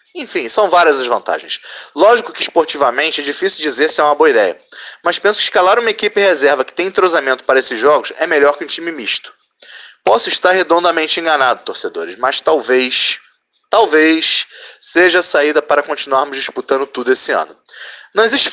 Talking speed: 175 wpm